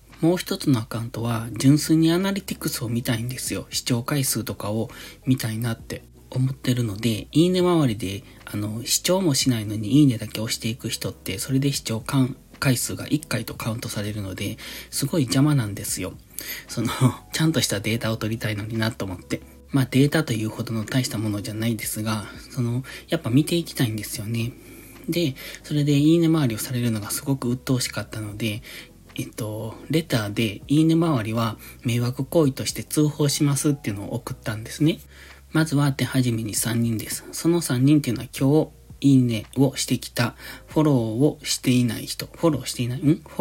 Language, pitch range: Japanese, 110-150 Hz